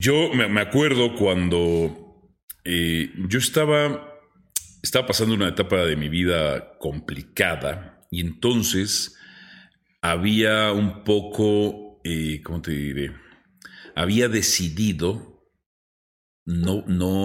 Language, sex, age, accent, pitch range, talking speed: Spanish, male, 40-59, Mexican, 80-105 Hz, 95 wpm